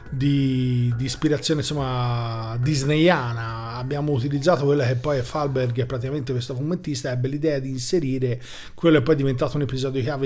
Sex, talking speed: male, 165 wpm